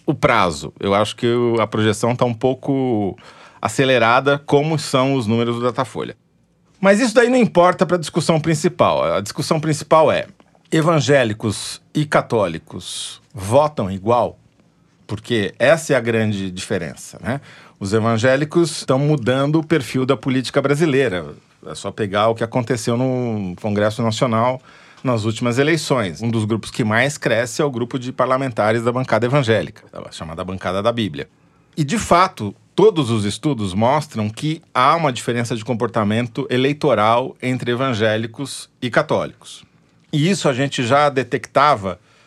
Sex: male